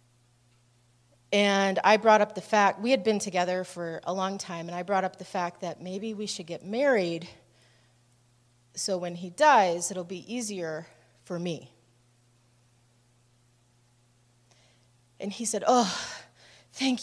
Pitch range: 120-205 Hz